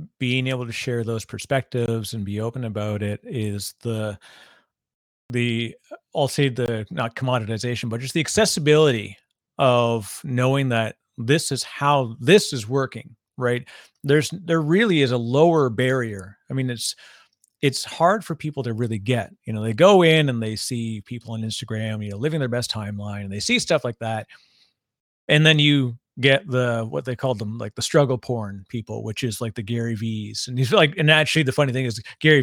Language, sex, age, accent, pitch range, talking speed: English, male, 40-59, American, 115-145 Hz, 190 wpm